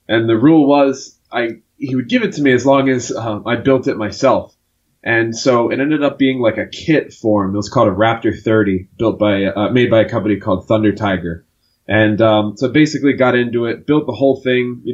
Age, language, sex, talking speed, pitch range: 20-39, English, male, 230 wpm, 105-125 Hz